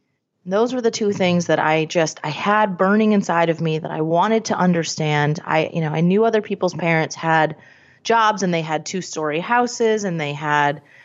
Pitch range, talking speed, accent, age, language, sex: 160-220 Hz, 205 wpm, American, 30-49, English, female